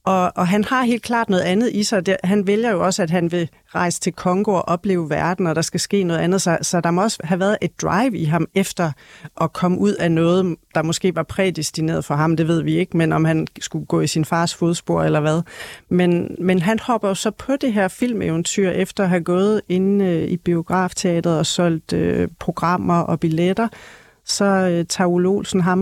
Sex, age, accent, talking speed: female, 40-59, native, 225 wpm